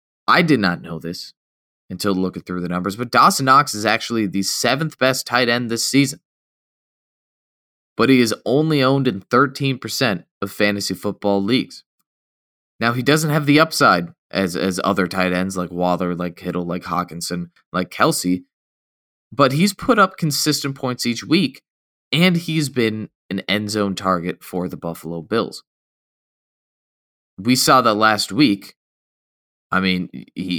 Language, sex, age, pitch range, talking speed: English, male, 20-39, 95-125 Hz, 155 wpm